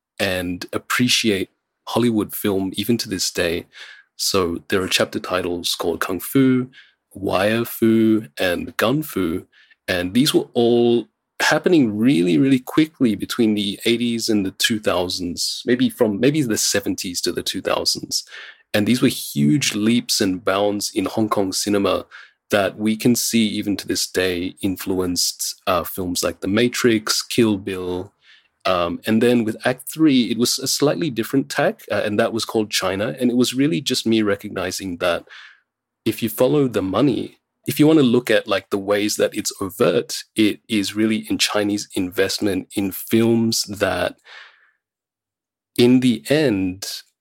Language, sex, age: English, male, 30-49